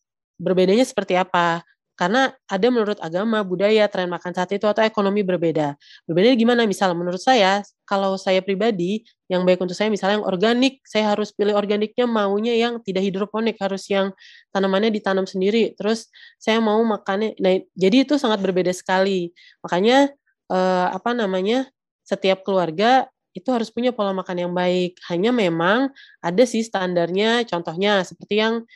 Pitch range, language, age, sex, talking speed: 180-220 Hz, Indonesian, 20-39, female, 155 wpm